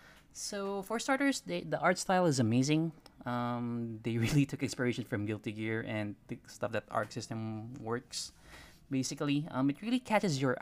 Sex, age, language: male, 20-39, Filipino